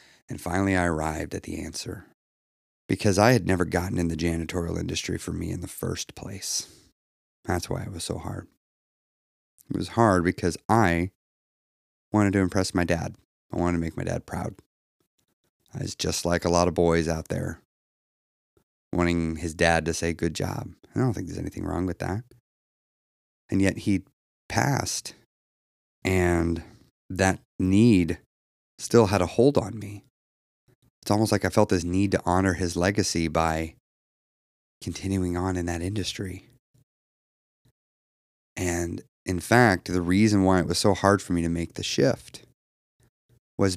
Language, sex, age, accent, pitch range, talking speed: English, male, 30-49, American, 85-100 Hz, 160 wpm